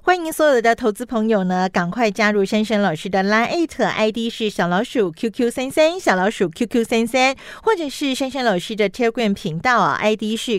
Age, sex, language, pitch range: 40-59, female, Chinese, 200-290 Hz